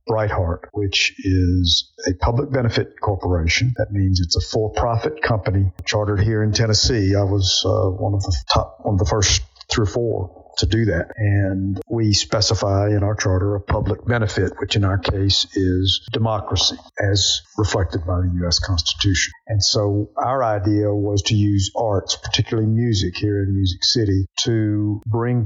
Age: 50-69